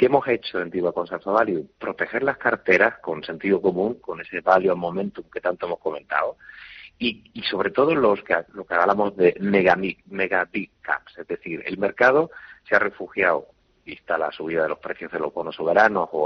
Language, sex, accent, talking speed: Spanish, male, Spanish, 195 wpm